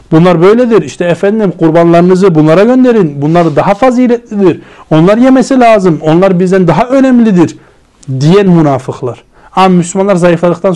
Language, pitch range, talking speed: Turkish, 155-215 Hz, 125 wpm